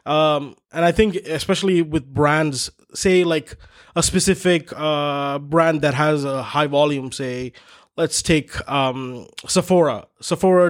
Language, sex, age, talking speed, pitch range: English, male, 20-39, 135 wpm, 145-170 Hz